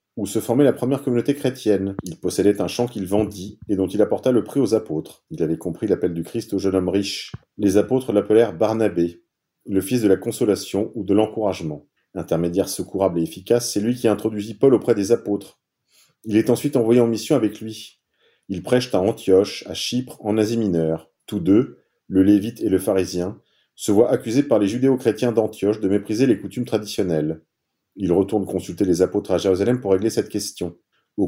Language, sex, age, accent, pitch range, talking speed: French, male, 40-59, French, 95-120 Hz, 200 wpm